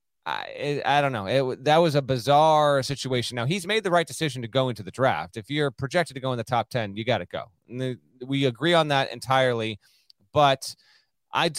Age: 30-49